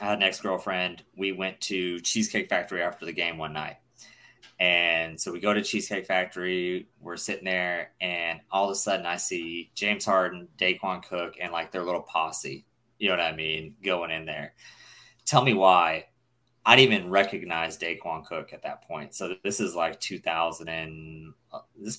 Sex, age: male, 20-39